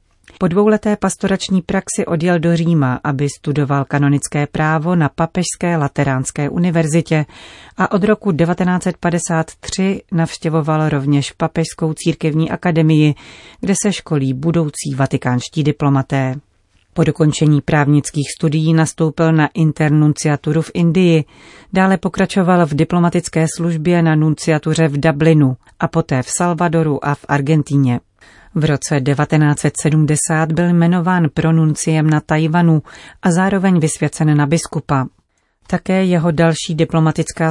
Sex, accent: female, native